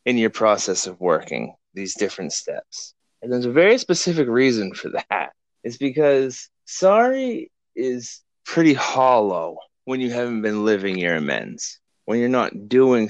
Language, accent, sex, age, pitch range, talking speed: English, American, male, 20-39, 120-185 Hz, 150 wpm